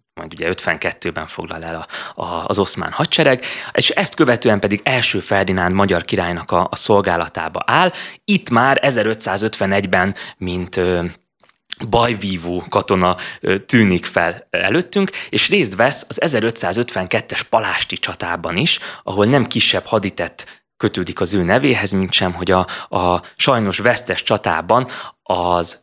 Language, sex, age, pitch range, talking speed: Hungarian, male, 20-39, 90-115 Hz, 130 wpm